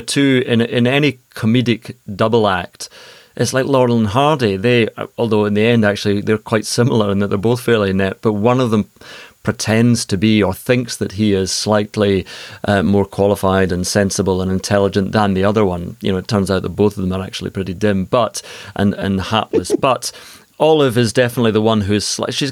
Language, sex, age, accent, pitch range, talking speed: English, male, 30-49, British, 100-125 Hz, 205 wpm